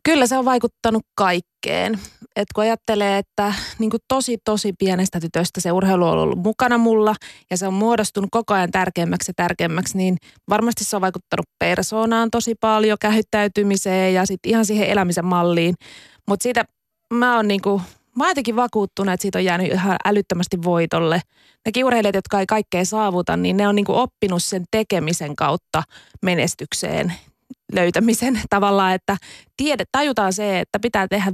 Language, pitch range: Finnish, 185-225 Hz